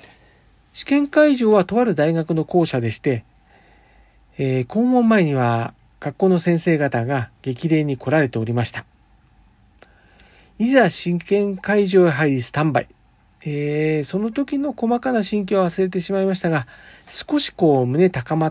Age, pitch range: 40-59, 130-190 Hz